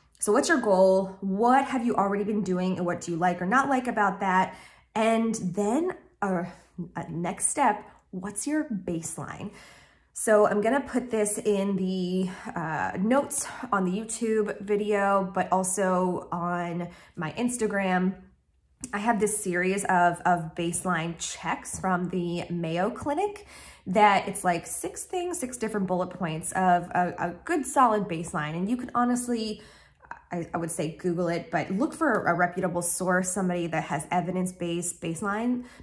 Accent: American